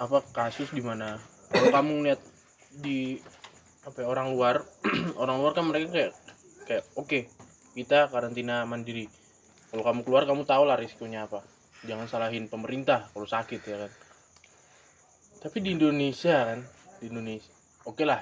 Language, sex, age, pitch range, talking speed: Indonesian, male, 20-39, 110-145 Hz, 145 wpm